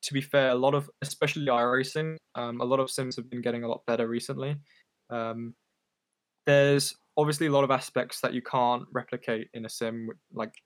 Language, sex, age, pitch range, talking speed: English, male, 10-29, 115-140 Hz, 205 wpm